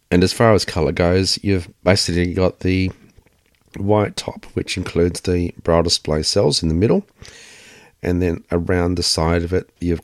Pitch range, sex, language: 85-95 Hz, male, English